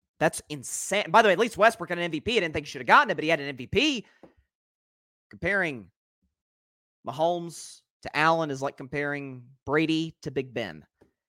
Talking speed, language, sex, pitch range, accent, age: 185 wpm, English, male, 140-220 Hz, American, 30-49